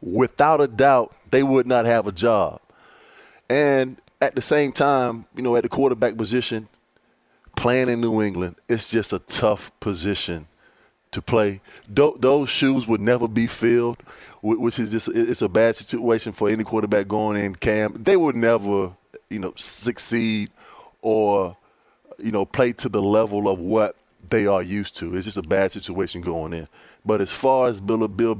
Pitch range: 100-125 Hz